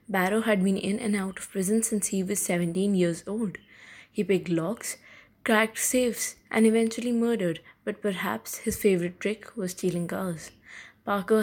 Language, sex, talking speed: English, female, 165 wpm